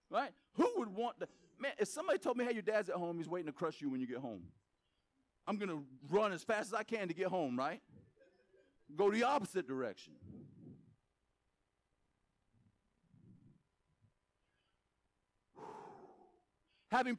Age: 40-59